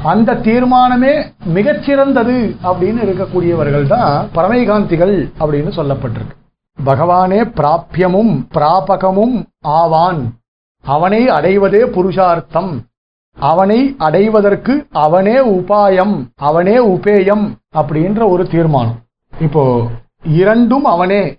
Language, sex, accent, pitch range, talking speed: Tamil, male, native, 165-225 Hz, 80 wpm